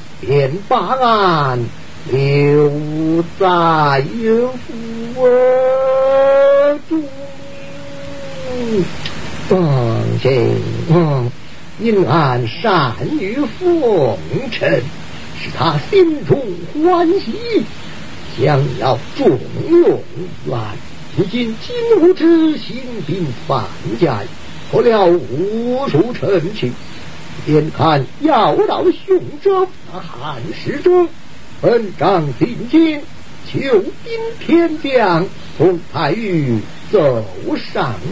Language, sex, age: Chinese, male, 50-69